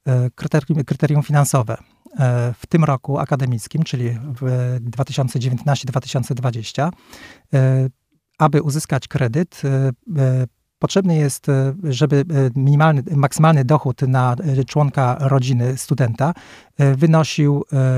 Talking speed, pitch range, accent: 75 wpm, 130-150 Hz, native